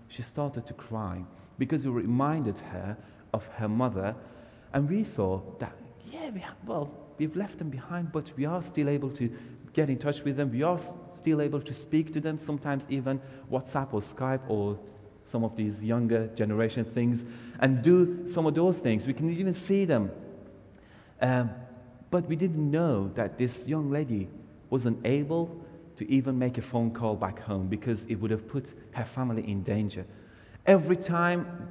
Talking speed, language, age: 175 wpm, English, 30-49